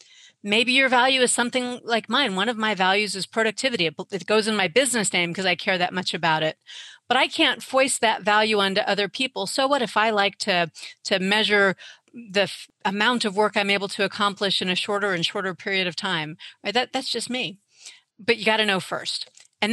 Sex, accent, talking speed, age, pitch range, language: female, American, 205 wpm, 40-59, 190-235 Hz, English